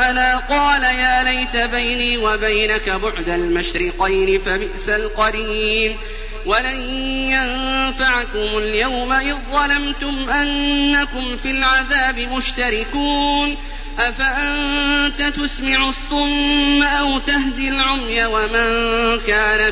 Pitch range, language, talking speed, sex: 215-265 Hz, Arabic, 70 wpm, male